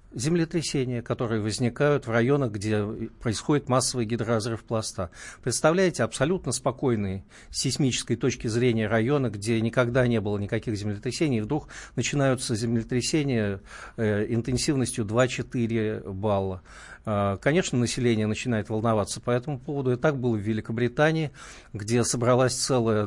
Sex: male